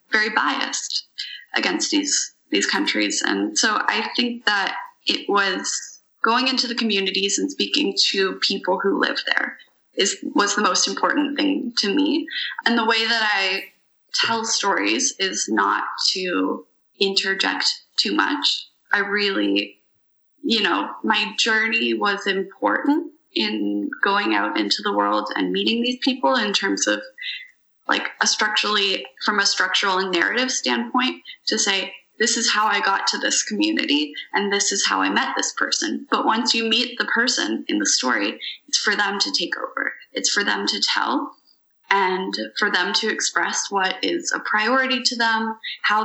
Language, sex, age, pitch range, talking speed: English, female, 20-39, 190-275 Hz, 165 wpm